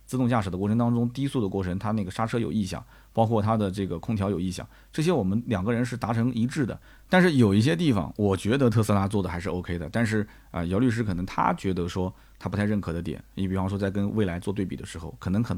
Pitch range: 95-120 Hz